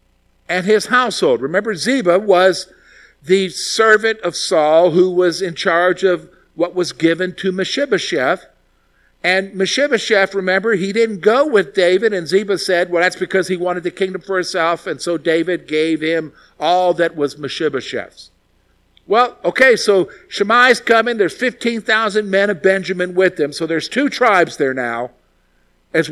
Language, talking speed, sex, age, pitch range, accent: English, 155 wpm, male, 50-69, 150-200 Hz, American